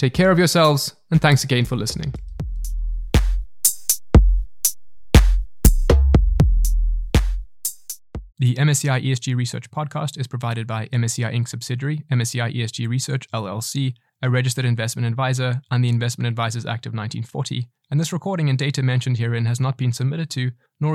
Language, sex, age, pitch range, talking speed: English, male, 20-39, 120-135 Hz, 135 wpm